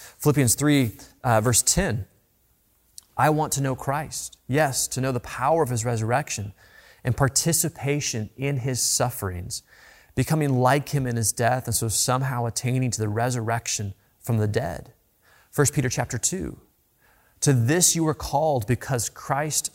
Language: English